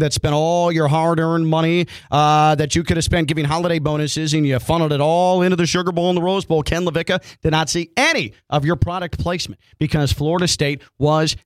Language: English